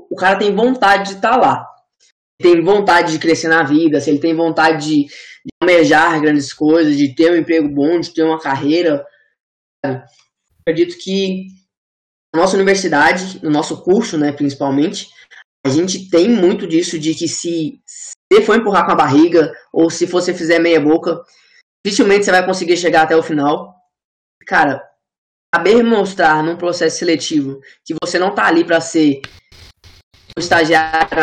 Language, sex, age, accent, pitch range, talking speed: Portuguese, female, 10-29, Brazilian, 150-185 Hz, 165 wpm